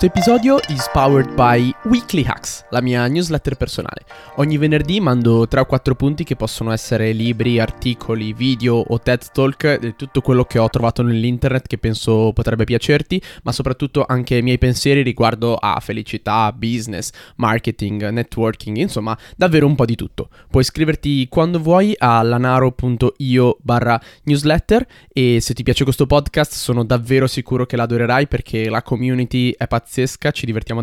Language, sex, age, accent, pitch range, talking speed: Italian, male, 20-39, native, 115-140 Hz, 160 wpm